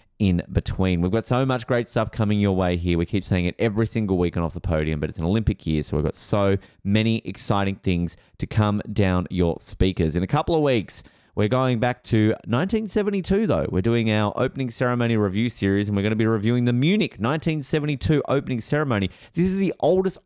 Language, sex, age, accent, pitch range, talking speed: English, male, 30-49, Australian, 85-120 Hz, 215 wpm